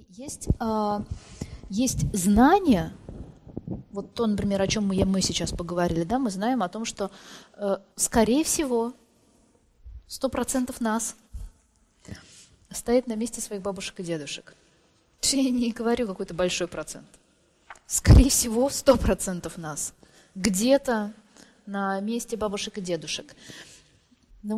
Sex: female